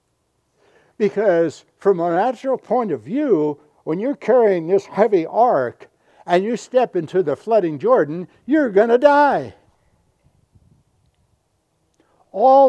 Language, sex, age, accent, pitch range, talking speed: English, male, 60-79, American, 125-200 Hz, 120 wpm